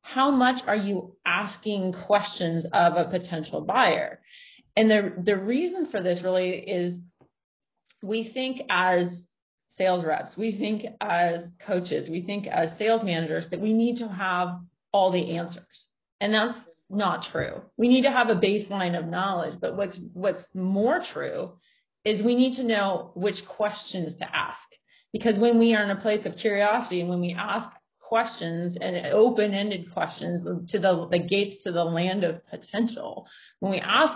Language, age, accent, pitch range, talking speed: English, 30-49, American, 175-220 Hz, 165 wpm